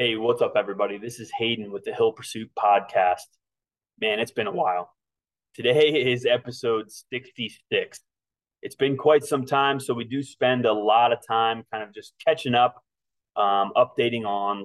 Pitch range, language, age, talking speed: 105-135 Hz, English, 30-49, 170 wpm